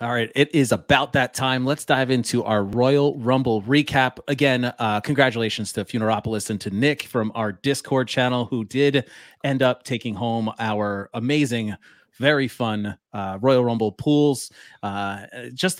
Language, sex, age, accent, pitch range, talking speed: English, male, 30-49, American, 110-135 Hz, 155 wpm